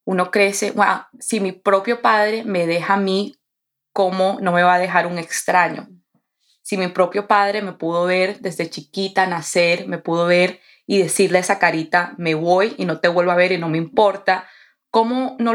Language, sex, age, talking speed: Spanish, female, 20-39, 195 wpm